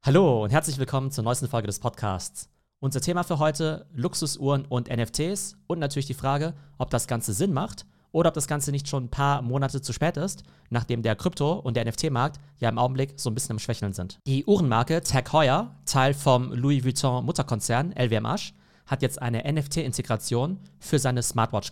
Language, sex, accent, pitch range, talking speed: German, male, German, 115-145 Hz, 195 wpm